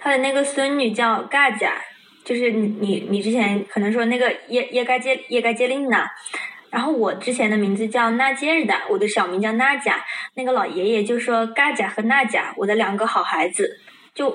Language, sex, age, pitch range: Chinese, female, 20-39, 205-250 Hz